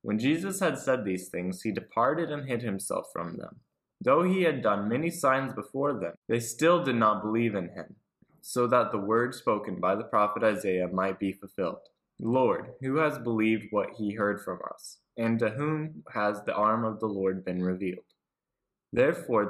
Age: 20-39